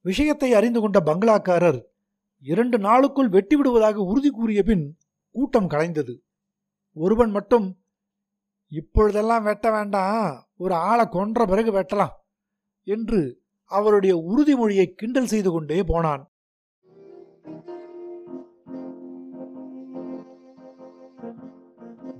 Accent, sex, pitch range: native, male, 165-225 Hz